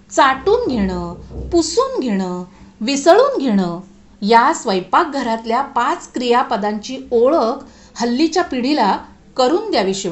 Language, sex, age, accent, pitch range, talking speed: Marathi, female, 50-69, native, 195-295 Hz, 90 wpm